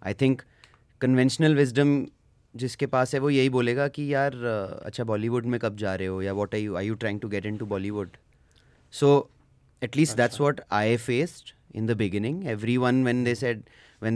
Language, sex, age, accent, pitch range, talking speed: Hindi, male, 30-49, native, 110-140 Hz, 200 wpm